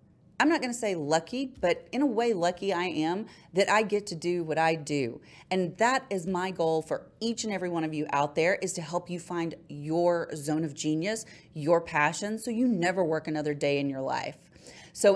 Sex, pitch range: female, 160-215 Hz